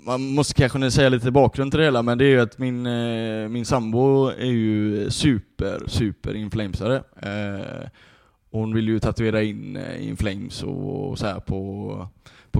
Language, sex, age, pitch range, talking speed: Swedish, male, 20-39, 110-135 Hz, 155 wpm